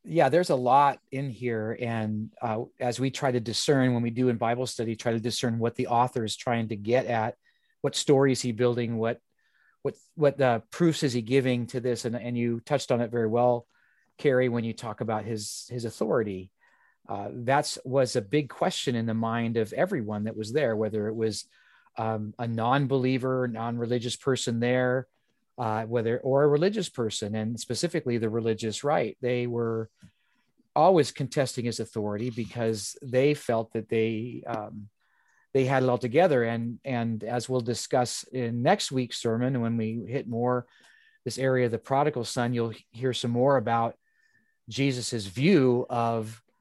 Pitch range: 115-135 Hz